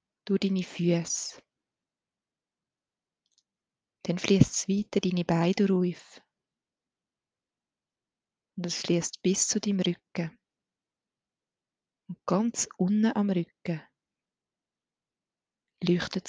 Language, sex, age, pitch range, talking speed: German, female, 30-49, 180-205 Hz, 85 wpm